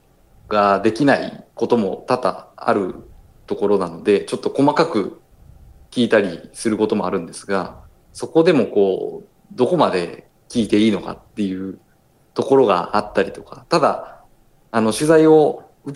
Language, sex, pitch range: Japanese, male, 100-145 Hz